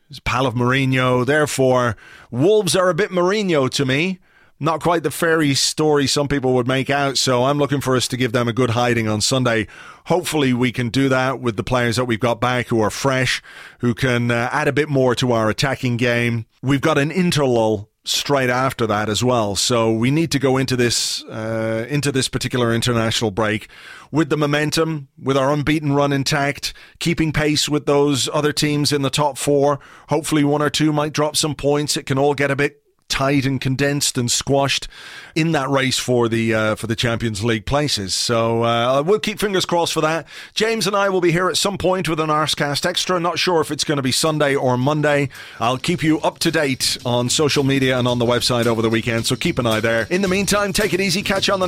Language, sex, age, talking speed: English, male, 30-49, 225 wpm